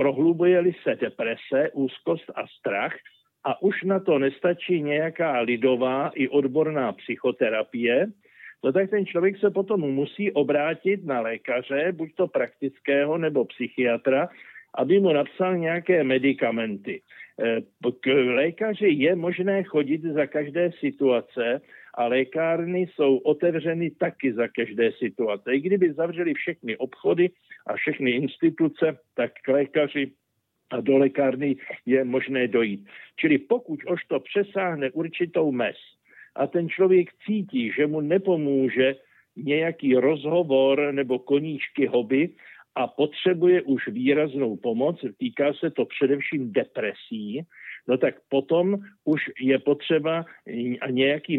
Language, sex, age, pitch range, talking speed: Slovak, male, 60-79, 135-175 Hz, 125 wpm